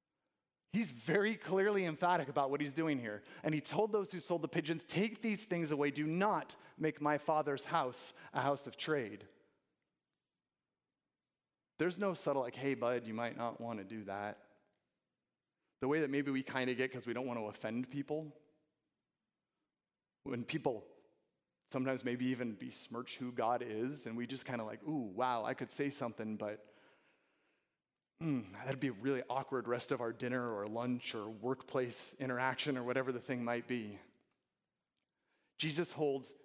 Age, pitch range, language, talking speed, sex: 30-49, 120-155 Hz, English, 170 wpm, male